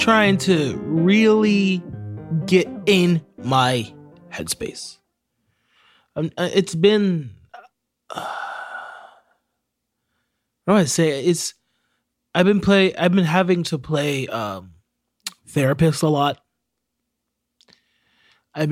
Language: English